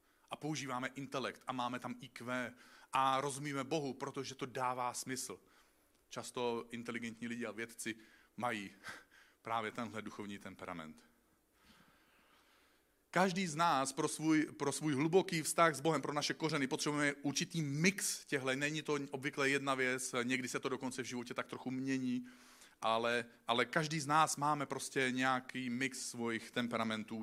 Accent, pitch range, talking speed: native, 120-150 Hz, 150 wpm